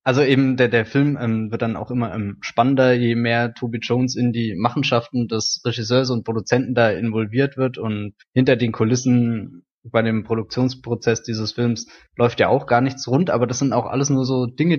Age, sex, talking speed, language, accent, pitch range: 20-39, male, 195 wpm, German, German, 115-135 Hz